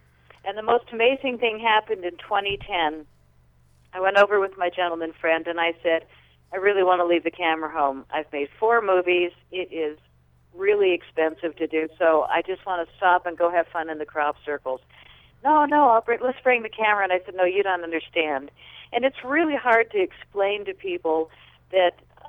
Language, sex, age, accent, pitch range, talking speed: English, female, 50-69, American, 160-205 Hz, 195 wpm